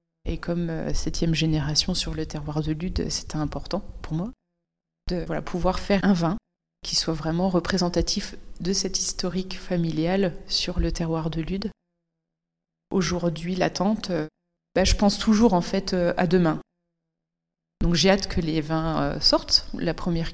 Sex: female